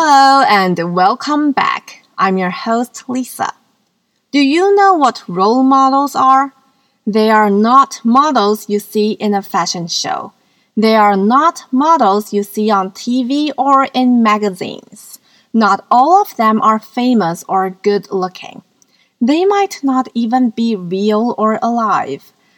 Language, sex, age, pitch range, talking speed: English, female, 30-49, 205-270 Hz, 140 wpm